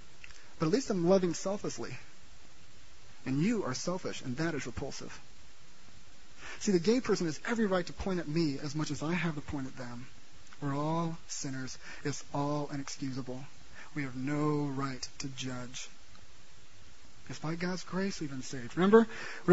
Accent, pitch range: American, 155-220 Hz